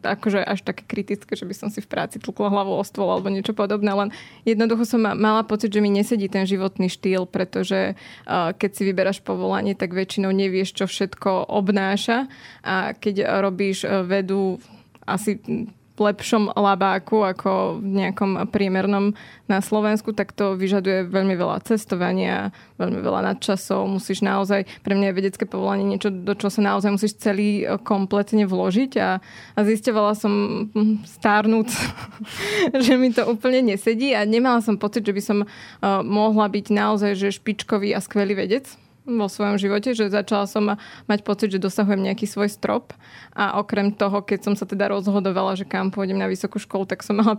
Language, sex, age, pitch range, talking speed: Slovak, female, 20-39, 195-215 Hz, 165 wpm